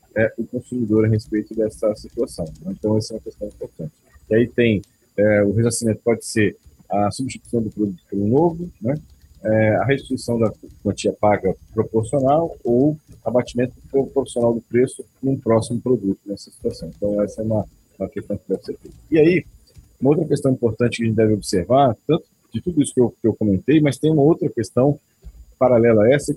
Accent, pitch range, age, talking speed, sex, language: Brazilian, 110-140 Hz, 40-59, 190 wpm, male, Portuguese